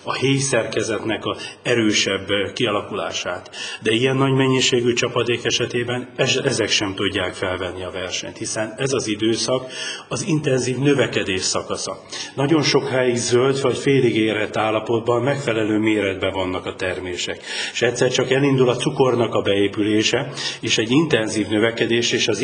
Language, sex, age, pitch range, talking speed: Hungarian, male, 40-59, 110-130 Hz, 135 wpm